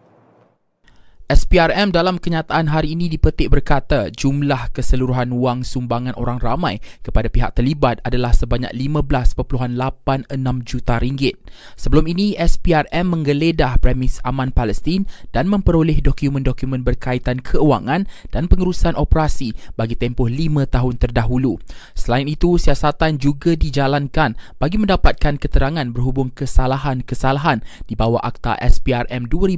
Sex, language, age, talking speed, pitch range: male, Malay, 20-39, 110 wpm, 125-160 Hz